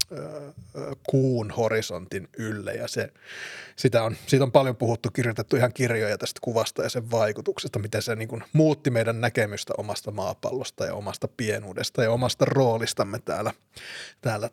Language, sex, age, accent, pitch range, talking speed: Finnish, male, 30-49, native, 115-140 Hz, 145 wpm